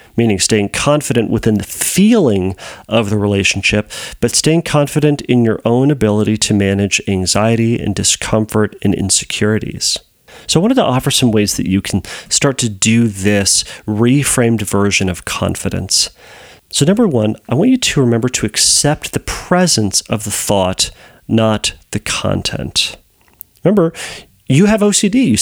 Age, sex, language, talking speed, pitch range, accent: 40-59, male, English, 150 wpm, 105-150 Hz, American